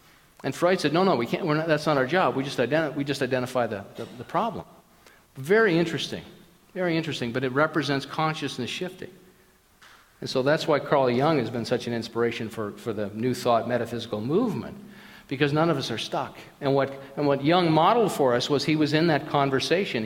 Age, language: 50-69, English